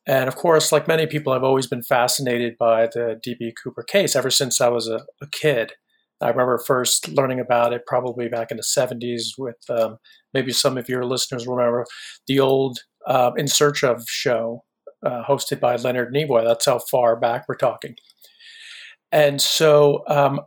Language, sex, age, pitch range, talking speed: English, male, 40-59, 125-150 Hz, 185 wpm